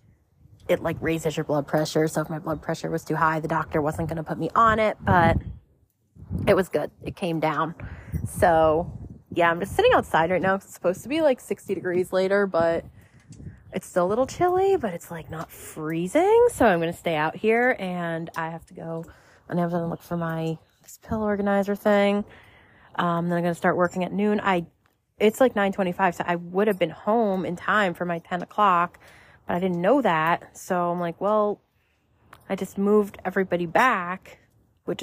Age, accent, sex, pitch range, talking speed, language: 20-39, American, female, 155-195 Hz, 205 wpm, English